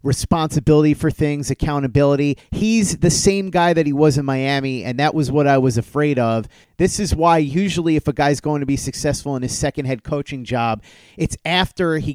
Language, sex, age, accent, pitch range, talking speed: English, male, 30-49, American, 140-175 Hz, 205 wpm